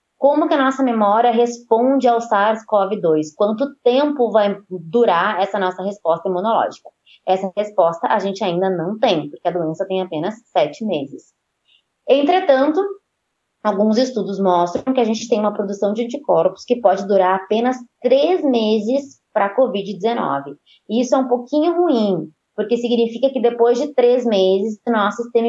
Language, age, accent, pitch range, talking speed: Portuguese, 20-39, Brazilian, 190-250 Hz, 155 wpm